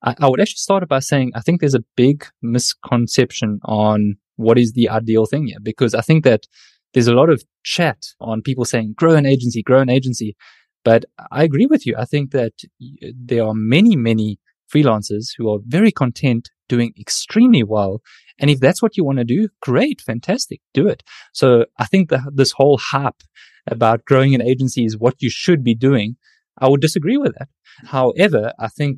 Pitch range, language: 115-140 Hz, English